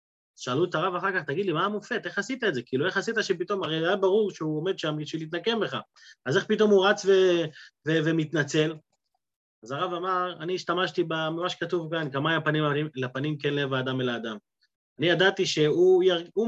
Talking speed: 195 wpm